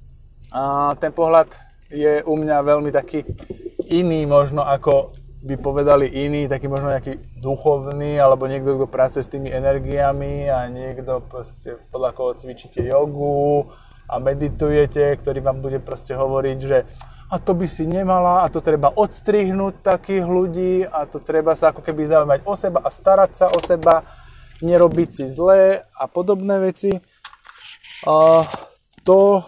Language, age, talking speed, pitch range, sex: Slovak, 20-39, 145 wpm, 140-175 Hz, male